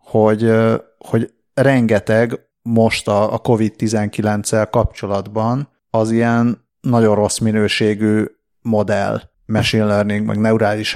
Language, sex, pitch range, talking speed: Hungarian, male, 105-120 Hz, 110 wpm